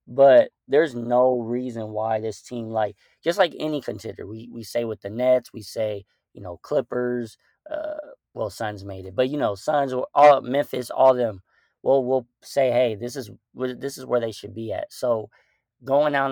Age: 20-39